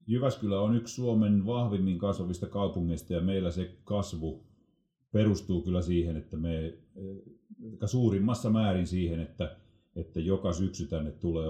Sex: male